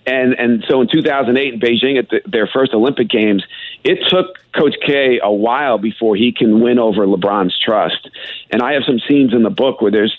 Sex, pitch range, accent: male, 110-145 Hz, American